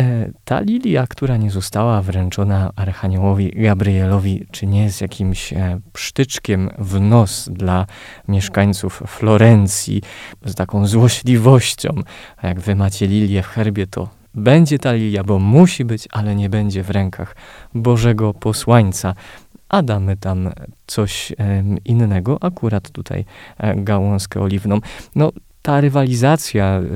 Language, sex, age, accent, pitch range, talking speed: Polish, male, 20-39, native, 95-115 Hz, 120 wpm